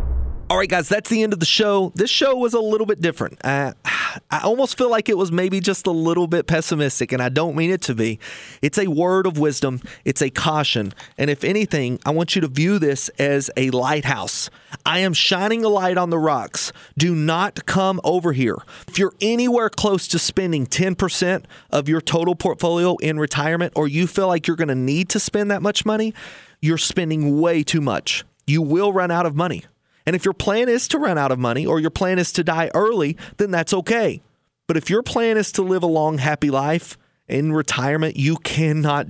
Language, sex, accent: English, male, American